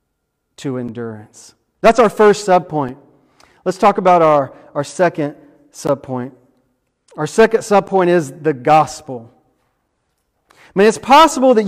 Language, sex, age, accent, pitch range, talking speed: English, male, 40-59, American, 155-215 Hz, 125 wpm